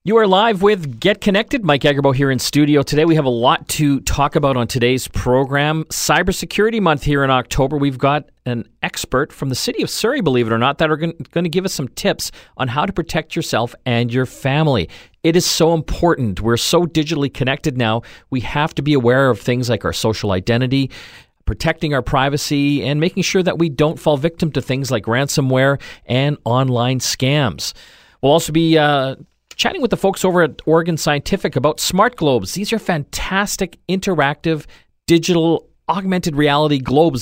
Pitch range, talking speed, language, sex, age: 125-165 Hz, 190 wpm, English, male, 40-59